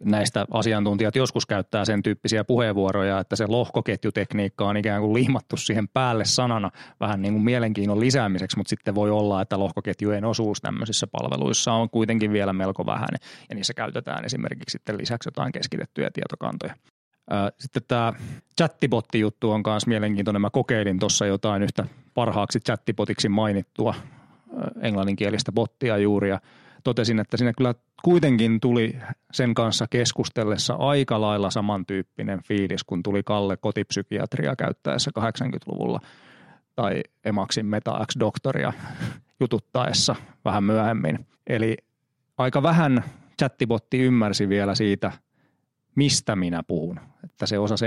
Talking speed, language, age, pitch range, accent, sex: 125 wpm, Finnish, 30-49, 100-120 Hz, native, male